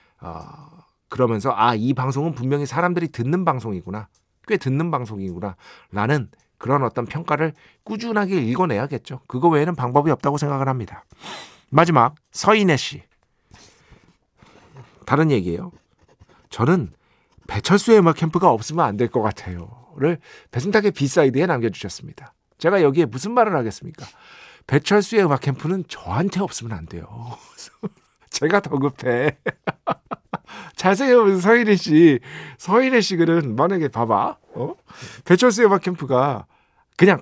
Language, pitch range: Korean, 125-195 Hz